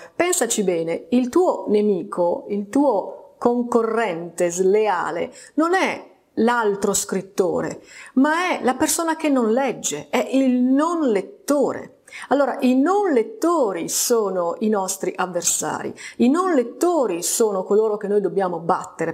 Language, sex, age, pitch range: Italian, female, 30-49, 190-265 Hz